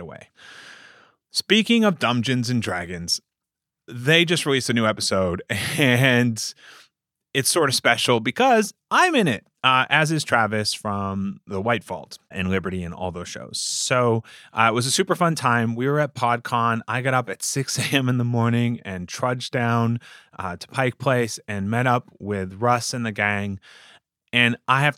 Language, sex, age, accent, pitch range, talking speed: English, male, 30-49, American, 110-140 Hz, 180 wpm